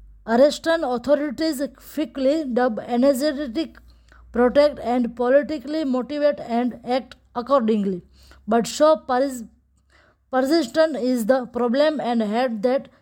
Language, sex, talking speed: English, female, 100 wpm